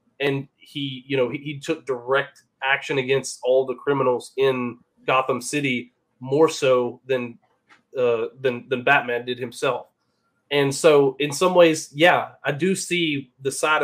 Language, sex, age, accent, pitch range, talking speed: English, male, 20-39, American, 130-165 Hz, 150 wpm